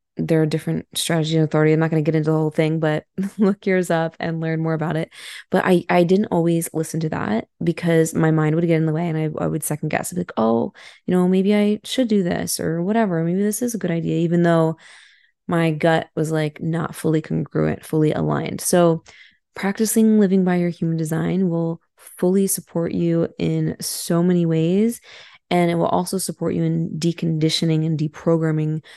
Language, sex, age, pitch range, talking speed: English, female, 20-39, 160-180 Hz, 210 wpm